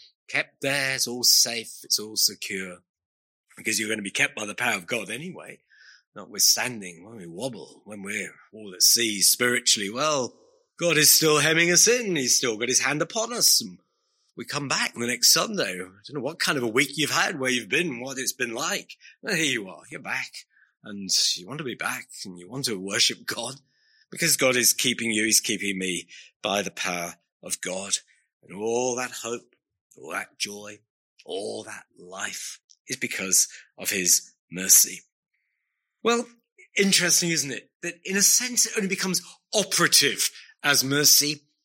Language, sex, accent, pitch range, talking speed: English, male, British, 115-185 Hz, 185 wpm